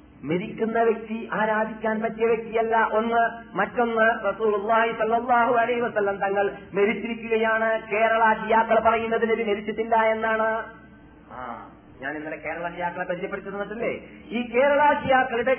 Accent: native